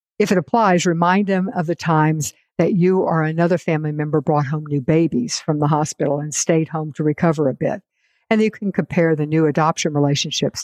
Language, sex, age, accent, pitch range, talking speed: English, female, 60-79, American, 150-180 Hz, 205 wpm